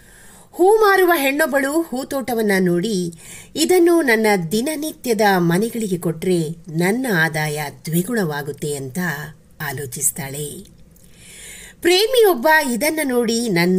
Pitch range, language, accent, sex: 160-245 Hz, English, Indian, female